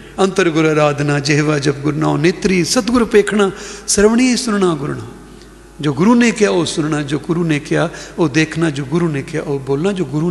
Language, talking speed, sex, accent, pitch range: English, 190 wpm, male, Indian, 155-205 Hz